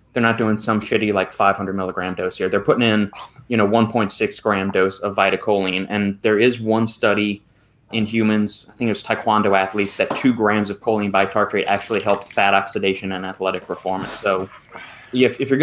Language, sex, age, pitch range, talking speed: English, male, 20-39, 100-115 Hz, 190 wpm